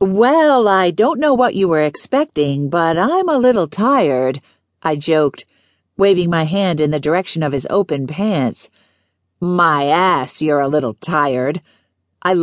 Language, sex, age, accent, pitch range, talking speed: English, female, 50-69, American, 140-185 Hz, 155 wpm